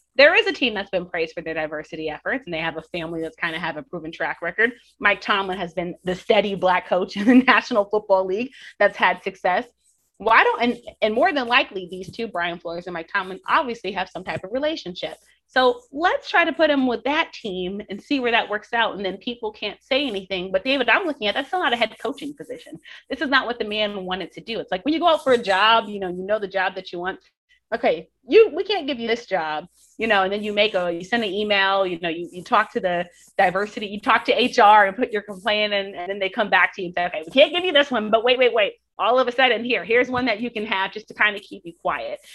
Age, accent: 30-49, American